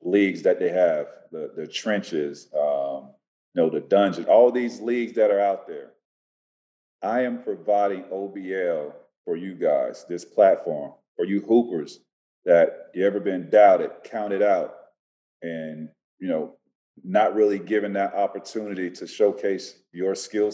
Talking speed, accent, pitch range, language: 145 wpm, American, 95-115 Hz, English